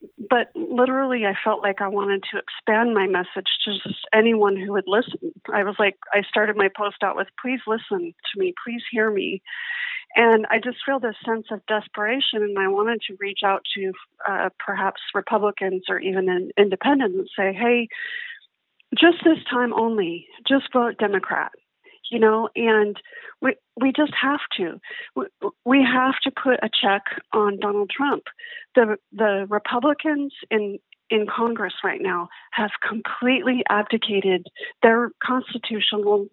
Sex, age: female, 40-59